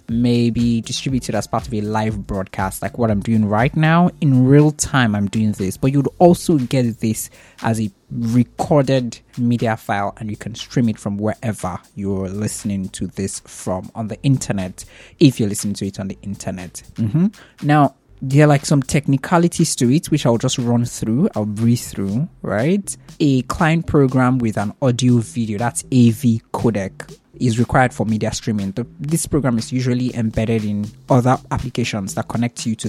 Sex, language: male, English